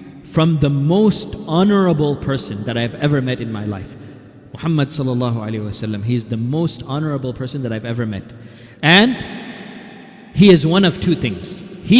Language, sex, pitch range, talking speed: English, male, 145-215 Hz, 165 wpm